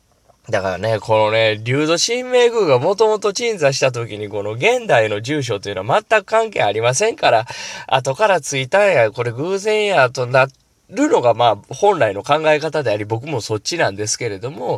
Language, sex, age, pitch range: Japanese, male, 20-39, 115-180 Hz